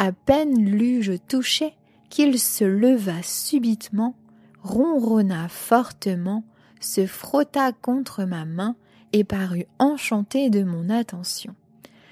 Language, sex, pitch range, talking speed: French, female, 185-240 Hz, 105 wpm